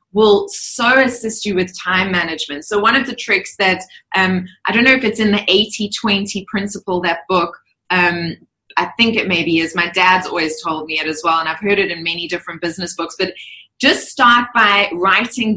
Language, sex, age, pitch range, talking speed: English, female, 20-39, 180-230 Hz, 205 wpm